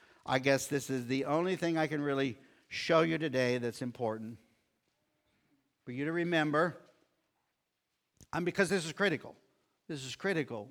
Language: English